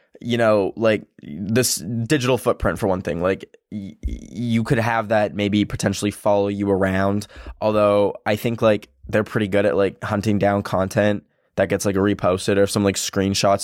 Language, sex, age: English, male, 10-29